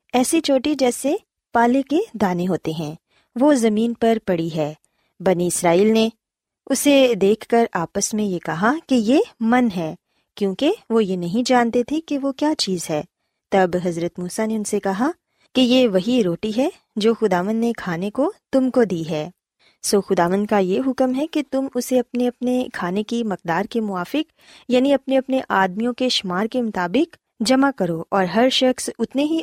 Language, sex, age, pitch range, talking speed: Urdu, female, 20-39, 195-260 Hz, 190 wpm